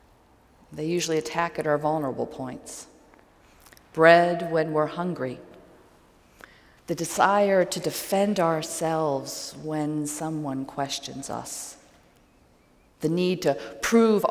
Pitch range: 135-155 Hz